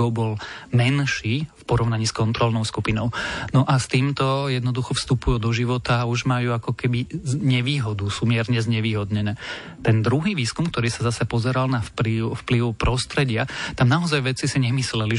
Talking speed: 160 wpm